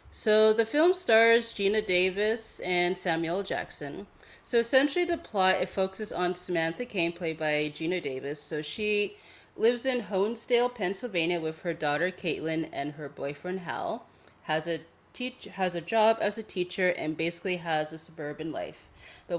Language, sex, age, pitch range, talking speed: English, female, 30-49, 155-210 Hz, 160 wpm